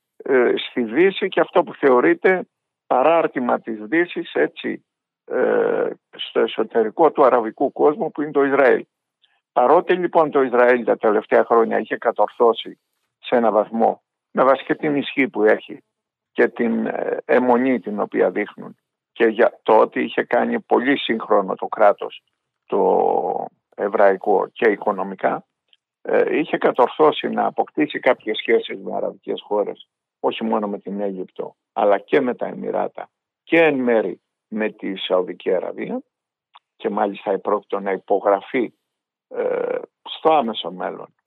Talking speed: 135 wpm